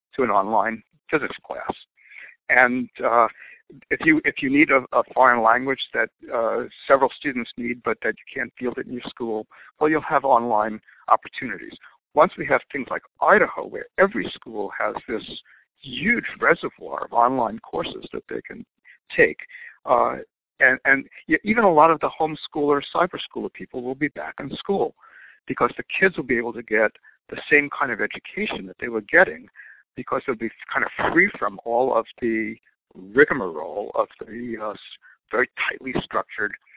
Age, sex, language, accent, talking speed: 60-79, male, English, American, 175 wpm